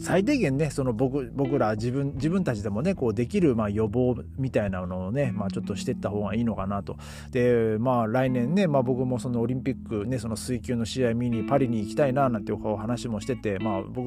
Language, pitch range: Japanese, 110-145 Hz